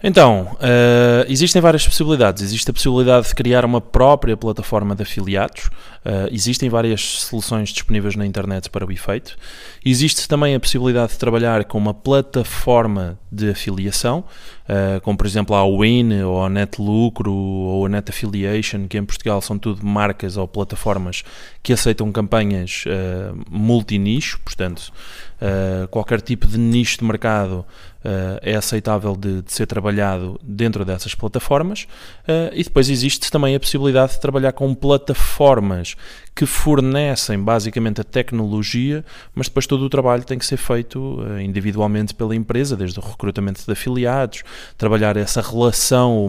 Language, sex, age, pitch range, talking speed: Portuguese, male, 20-39, 100-125 Hz, 150 wpm